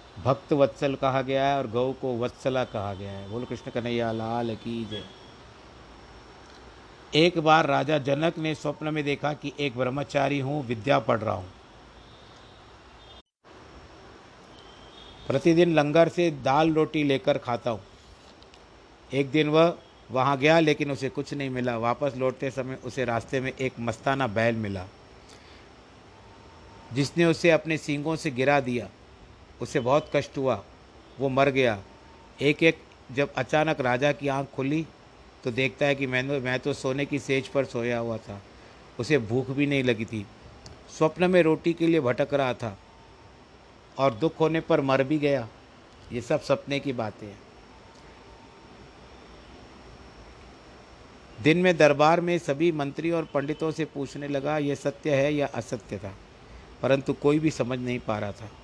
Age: 50-69